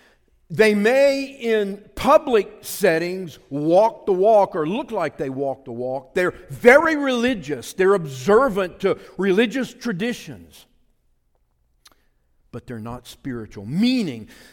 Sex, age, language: male, 50-69, English